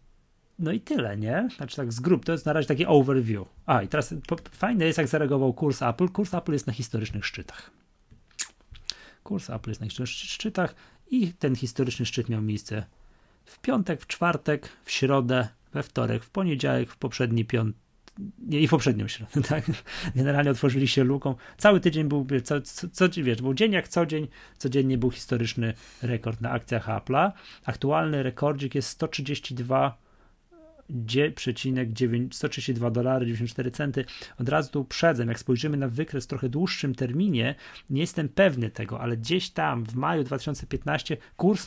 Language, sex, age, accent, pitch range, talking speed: Polish, male, 30-49, native, 120-155 Hz, 165 wpm